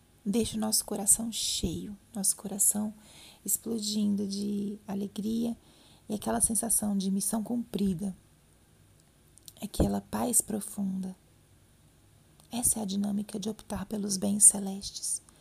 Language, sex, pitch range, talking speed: Portuguese, female, 195-220 Hz, 110 wpm